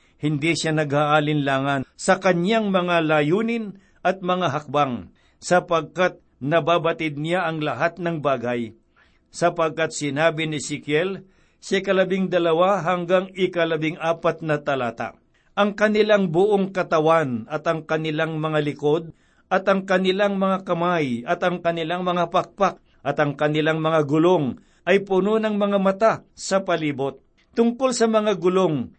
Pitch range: 150-185 Hz